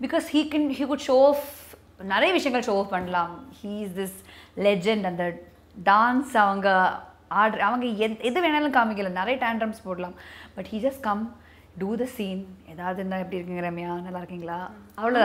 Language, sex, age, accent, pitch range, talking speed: Tamil, female, 20-39, native, 195-265 Hz, 170 wpm